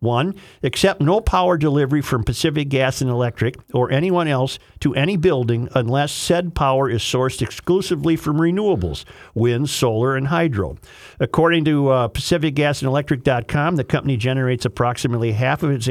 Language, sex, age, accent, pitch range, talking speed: English, male, 50-69, American, 125-160 Hz, 145 wpm